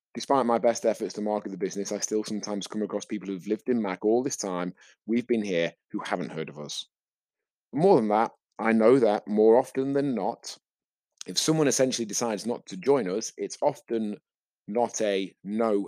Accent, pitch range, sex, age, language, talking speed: British, 95-115 Hz, male, 30-49, English, 195 wpm